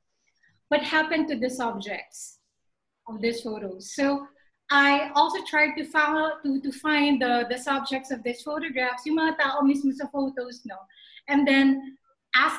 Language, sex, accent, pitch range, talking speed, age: English, female, Filipino, 245-290 Hz, 135 wpm, 30-49